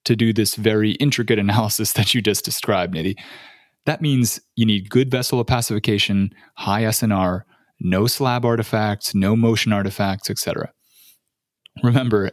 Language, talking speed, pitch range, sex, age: English, 135 wpm, 100-120 Hz, male, 20-39